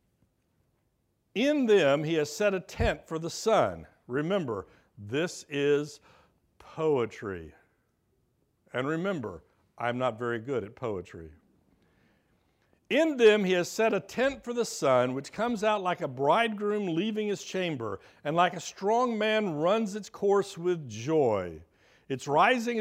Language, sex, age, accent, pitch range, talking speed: English, male, 60-79, American, 150-230 Hz, 140 wpm